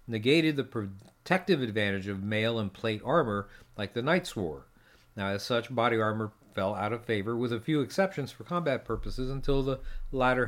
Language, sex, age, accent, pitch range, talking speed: English, male, 50-69, American, 105-140 Hz, 185 wpm